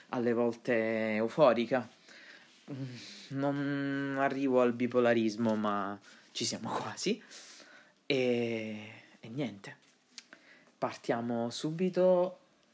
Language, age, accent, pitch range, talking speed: Italian, 20-39, native, 115-165 Hz, 75 wpm